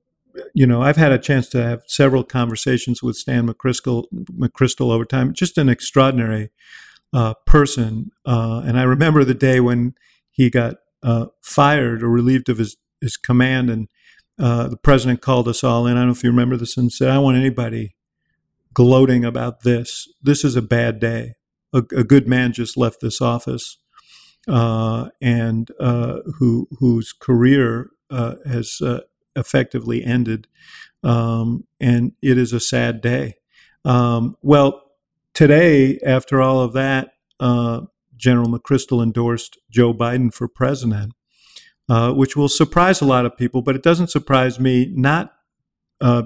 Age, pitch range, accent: 50-69, 120-135 Hz, American